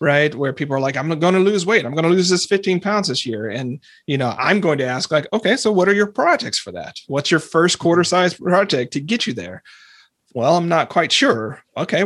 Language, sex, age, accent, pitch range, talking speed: English, male, 30-49, American, 135-175 Hz, 255 wpm